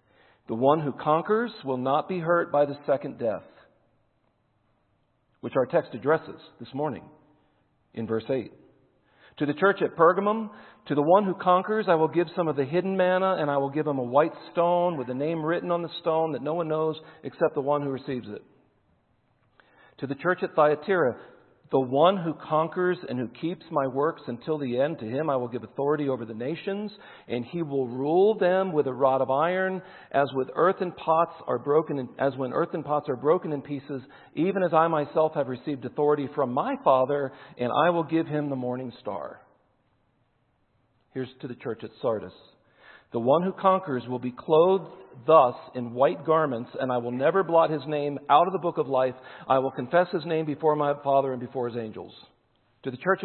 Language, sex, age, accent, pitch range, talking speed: English, male, 50-69, American, 130-170 Hz, 200 wpm